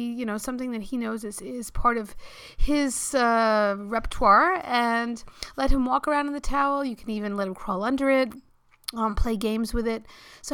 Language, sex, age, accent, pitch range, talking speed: English, female, 40-59, American, 210-250 Hz, 200 wpm